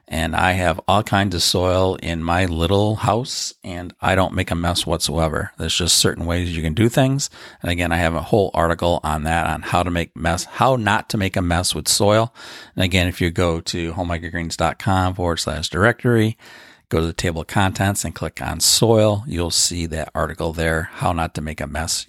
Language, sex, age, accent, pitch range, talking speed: English, male, 40-59, American, 85-100 Hz, 215 wpm